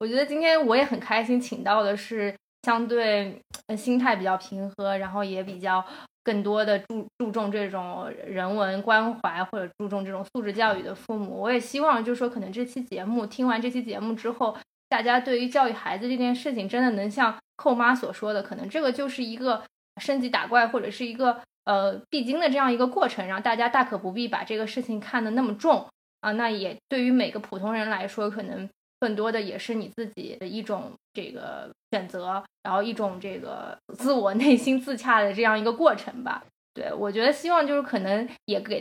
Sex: female